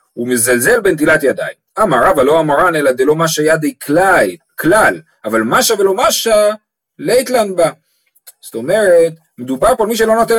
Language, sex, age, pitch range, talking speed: Hebrew, male, 40-59, 150-225 Hz, 155 wpm